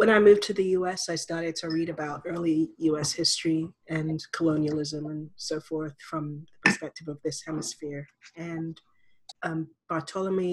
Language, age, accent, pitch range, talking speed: English, 30-49, American, 155-170 Hz, 160 wpm